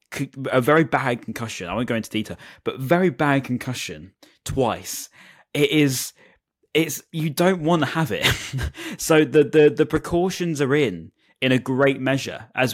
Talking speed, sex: 165 wpm, male